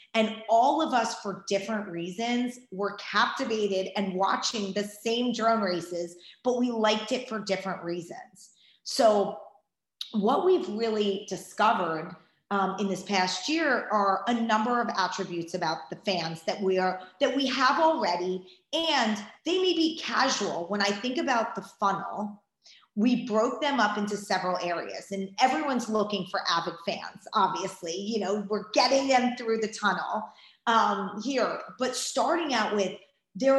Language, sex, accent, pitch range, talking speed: English, female, American, 190-240 Hz, 155 wpm